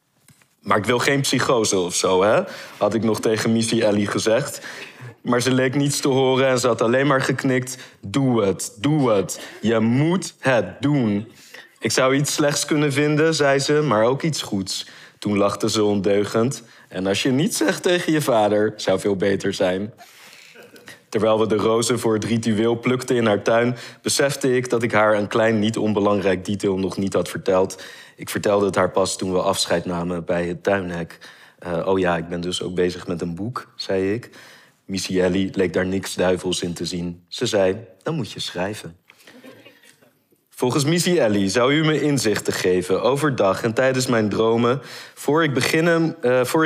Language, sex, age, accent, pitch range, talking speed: Dutch, male, 20-39, Dutch, 95-130 Hz, 185 wpm